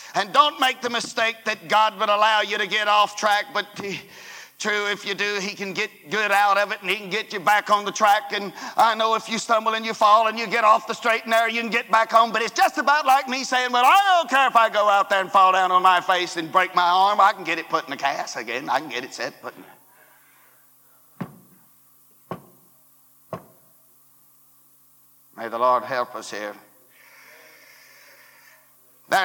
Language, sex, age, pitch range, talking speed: English, male, 60-79, 170-225 Hz, 220 wpm